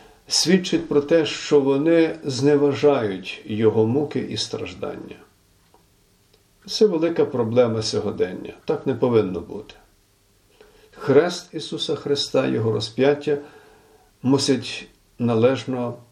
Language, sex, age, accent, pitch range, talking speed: Ukrainian, male, 50-69, native, 110-145 Hz, 95 wpm